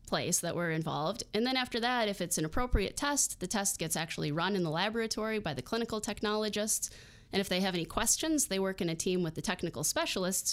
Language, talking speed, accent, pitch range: English, 220 wpm, American, 165-220 Hz